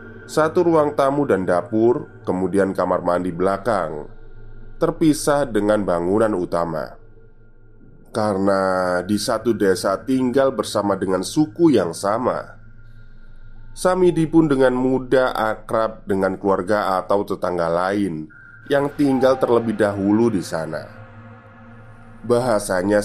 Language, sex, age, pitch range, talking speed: Indonesian, male, 20-39, 100-120 Hz, 105 wpm